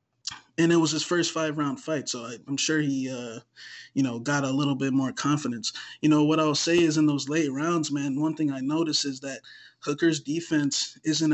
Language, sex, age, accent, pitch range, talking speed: English, male, 20-39, American, 145-160 Hz, 210 wpm